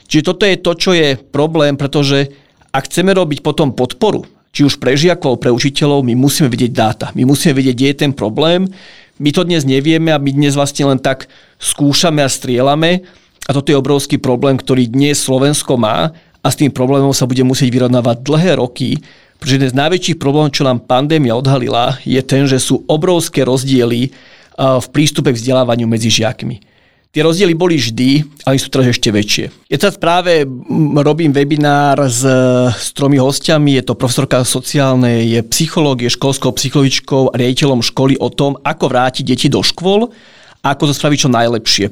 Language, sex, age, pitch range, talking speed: Slovak, male, 40-59, 130-150 Hz, 180 wpm